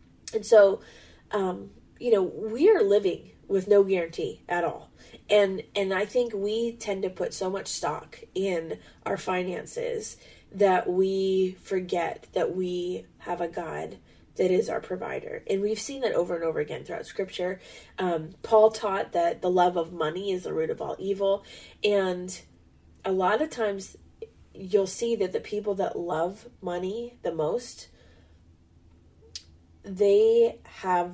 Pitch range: 180-225 Hz